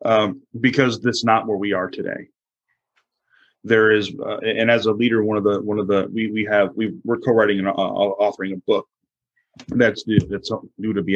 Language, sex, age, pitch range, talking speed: English, male, 30-49, 100-115 Hz, 205 wpm